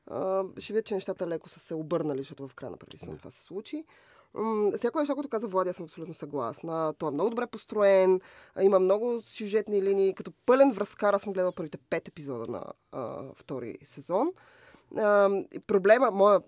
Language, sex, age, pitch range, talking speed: Bulgarian, female, 20-39, 170-205 Hz, 180 wpm